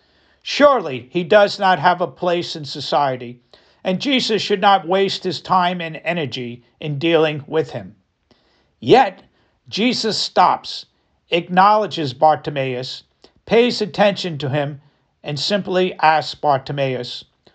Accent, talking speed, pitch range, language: American, 120 wpm, 150-190 Hz, English